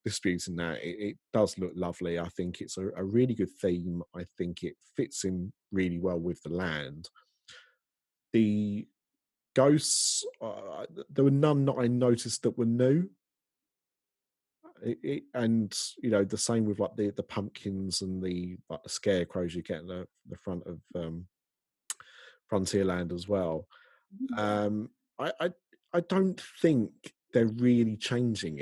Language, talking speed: English, 155 wpm